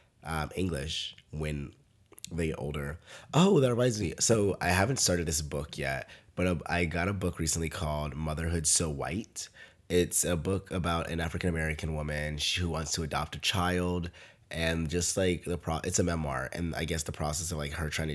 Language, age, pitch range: English, 20-39, 75-90 Hz